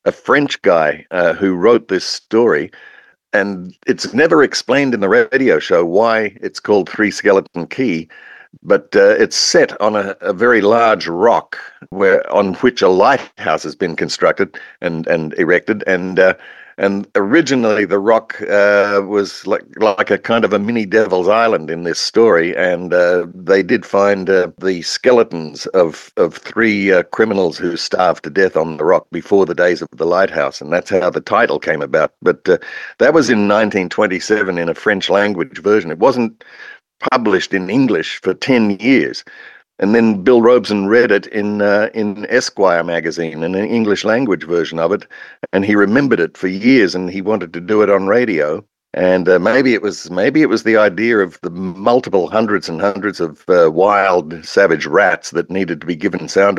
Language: English